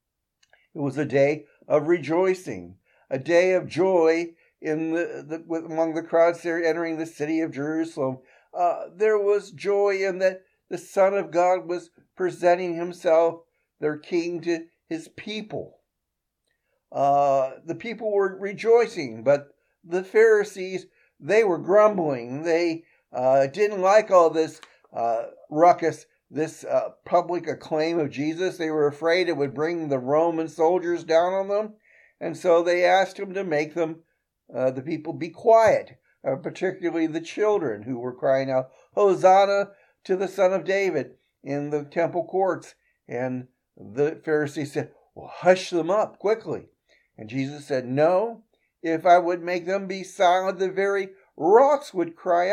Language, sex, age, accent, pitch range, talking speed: English, male, 60-79, American, 150-190 Hz, 155 wpm